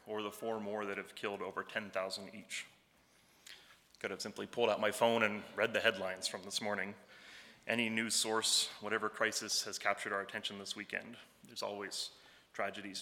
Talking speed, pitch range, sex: 175 wpm, 105-120 Hz, male